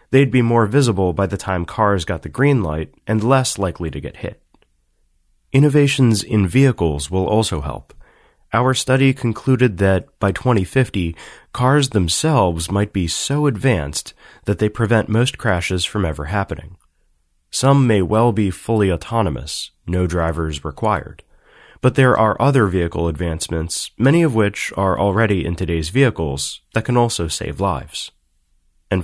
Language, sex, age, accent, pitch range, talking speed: English, male, 30-49, American, 85-120 Hz, 150 wpm